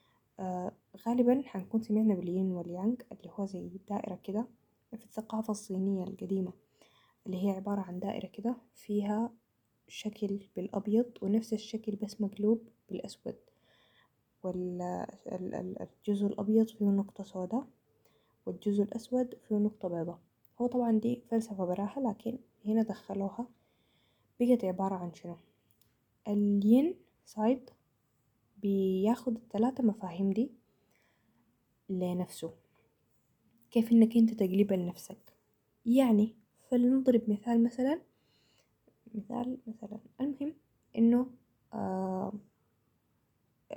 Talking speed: 100 wpm